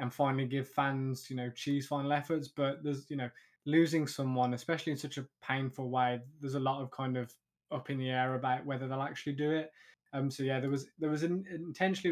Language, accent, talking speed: English, British, 235 wpm